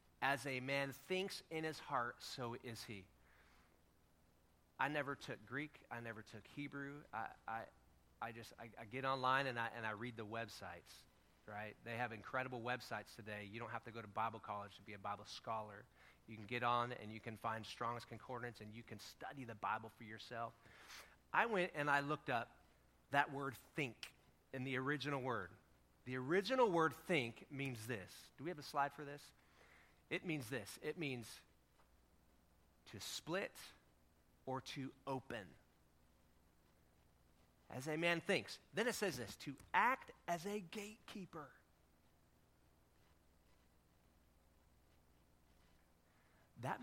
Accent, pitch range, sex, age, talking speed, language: American, 85-135 Hz, male, 30-49, 155 wpm, English